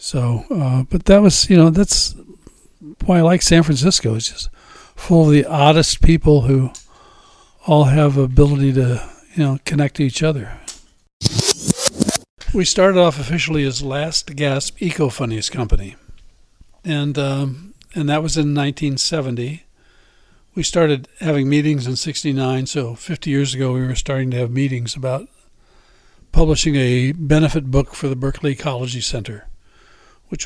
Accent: American